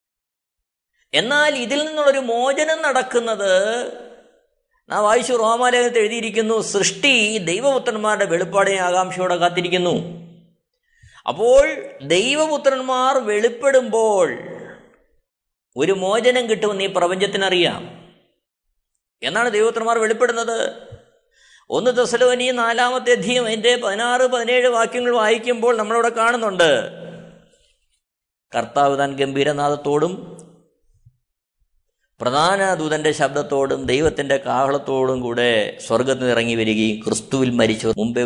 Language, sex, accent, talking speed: Malayalam, male, native, 75 wpm